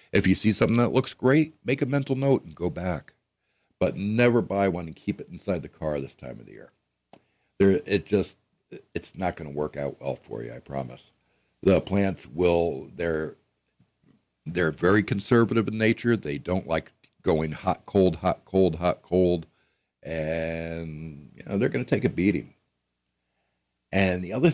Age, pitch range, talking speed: 60-79, 75-100 Hz, 180 wpm